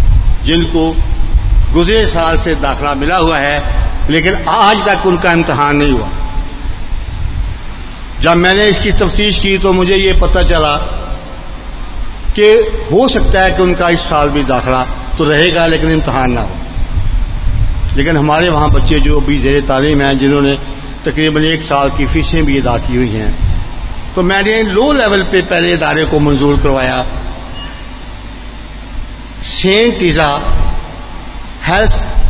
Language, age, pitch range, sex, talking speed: Hindi, 60-79, 120-175 Hz, male, 135 wpm